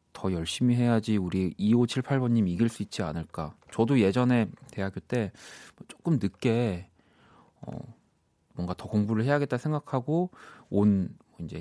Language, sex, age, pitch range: Korean, male, 30-49, 95-135 Hz